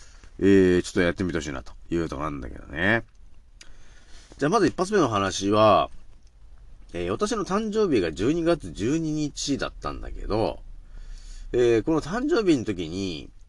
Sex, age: male, 40-59